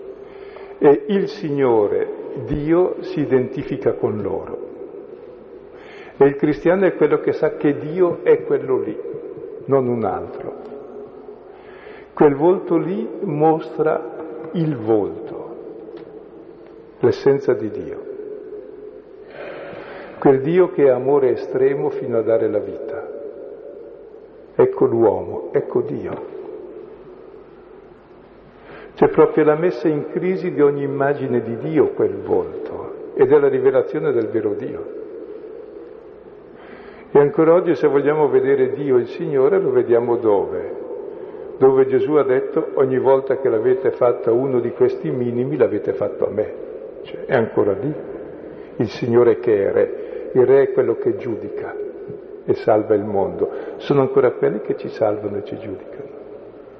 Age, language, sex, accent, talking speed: 50-69, Italian, male, native, 135 wpm